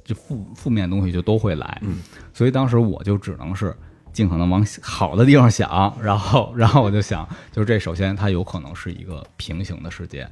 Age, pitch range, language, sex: 20-39, 90-120 Hz, Chinese, male